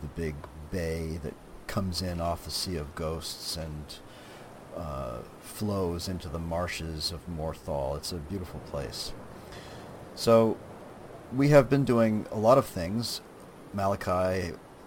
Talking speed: 135 wpm